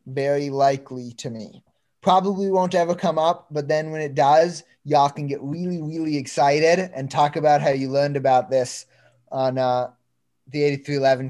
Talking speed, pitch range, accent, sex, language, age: 170 wpm, 130-155 Hz, American, male, English, 20-39